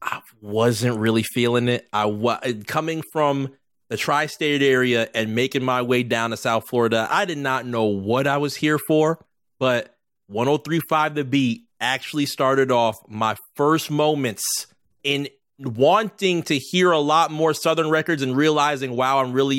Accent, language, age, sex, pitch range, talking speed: American, English, 30-49, male, 120-155 Hz, 170 wpm